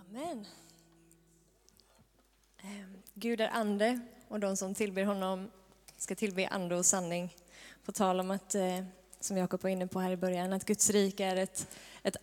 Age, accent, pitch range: 20-39, native, 190-220 Hz